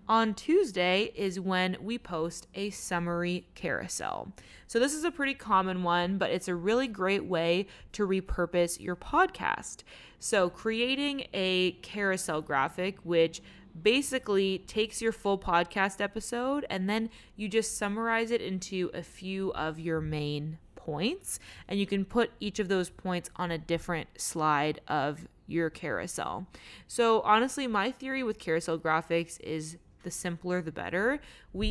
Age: 20-39